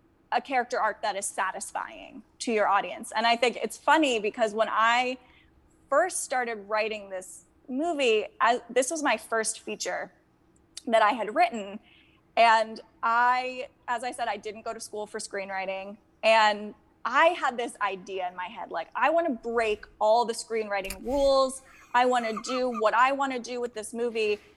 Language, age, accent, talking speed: English, 20-39, American, 175 wpm